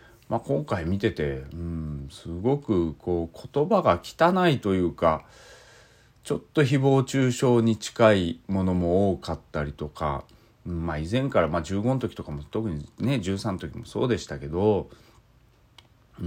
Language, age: Japanese, 40-59